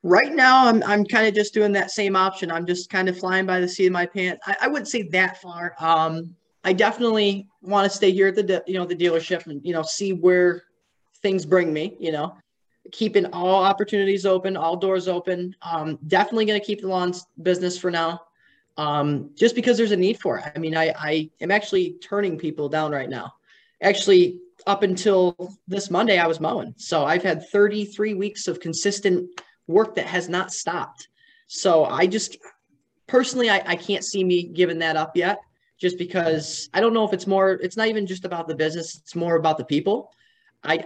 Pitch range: 165-200 Hz